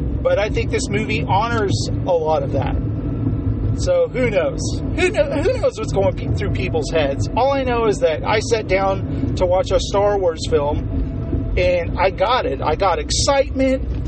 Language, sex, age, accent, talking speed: English, male, 30-49, American, 185 wpm